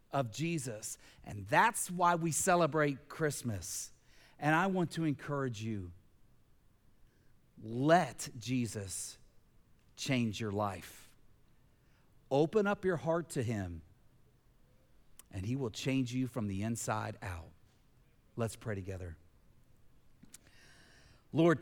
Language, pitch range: English, 115-170 Hz